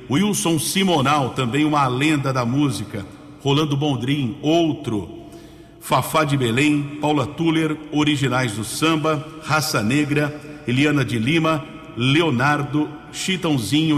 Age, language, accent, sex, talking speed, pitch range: 60-79, English, Brazilian, male, 105 wpm, 130-155 Hz